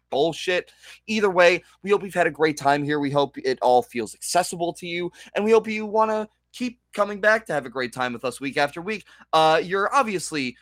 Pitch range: 130-180 Hz